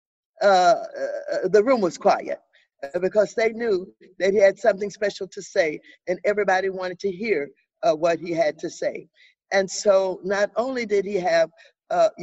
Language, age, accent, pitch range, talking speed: English, 50-69, American, 195-250 Hz, 165 wpm